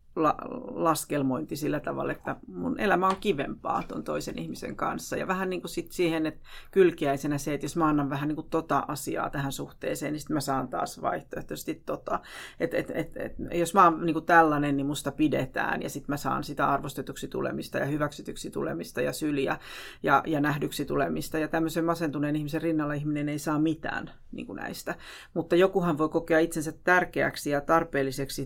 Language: Finnish